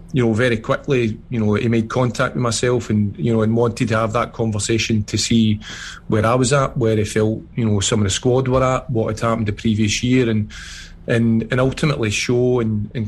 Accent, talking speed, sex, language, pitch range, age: British, 230 wpm, male, English, 105-125 Hz, 40-59